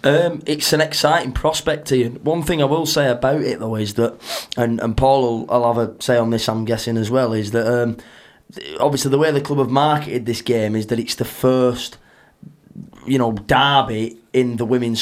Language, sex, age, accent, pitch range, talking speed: English, male, 20-39, British, 115-135 Hz, 210 wpm